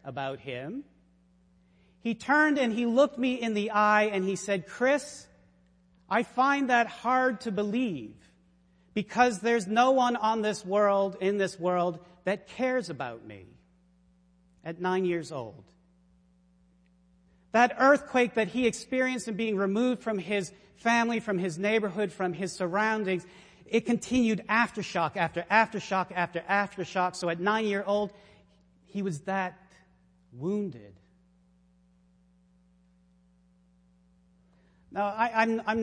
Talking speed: 125 wpm